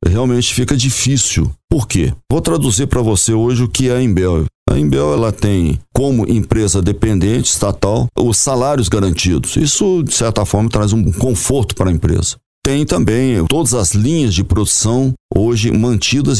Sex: male